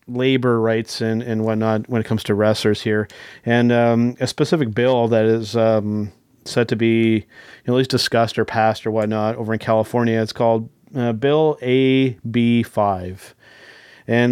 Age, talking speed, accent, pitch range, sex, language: 30-49, 170 wpm, American, 110-125 Hz, male, English